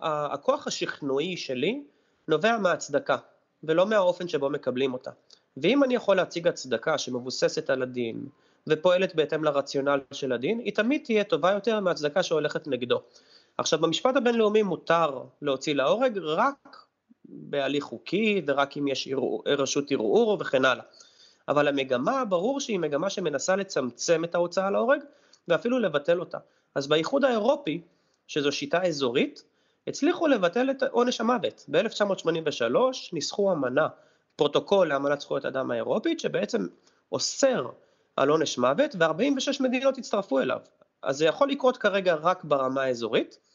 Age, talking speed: 30-49, 130 wpm